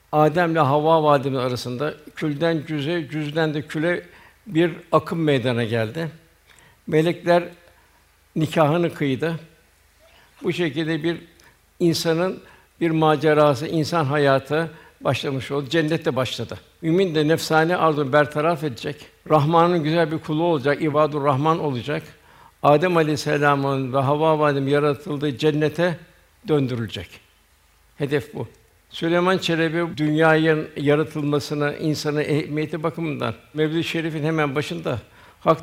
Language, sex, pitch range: Turkish, male, 140-165 Hz